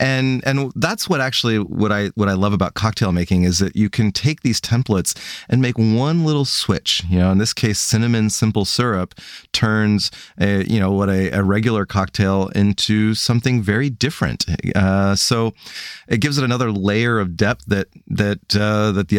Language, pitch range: English, 95-115 Hz